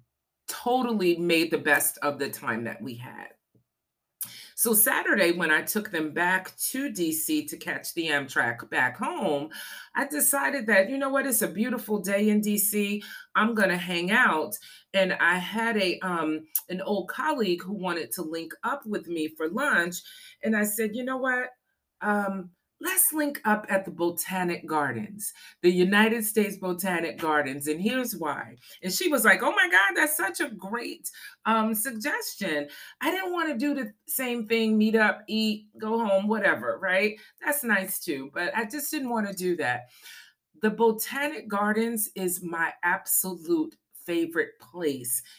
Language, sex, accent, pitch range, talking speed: English, female, American, 160-230 Hz, 170 wpm